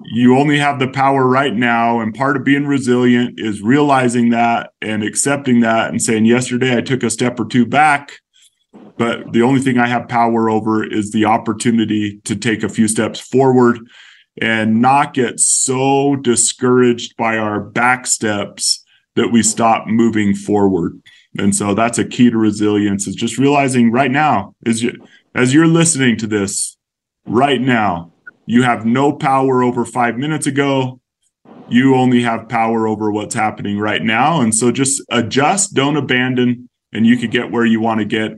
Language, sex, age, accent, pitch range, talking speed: English, male, 30-49, American, 110-130 Hz, 170 wpm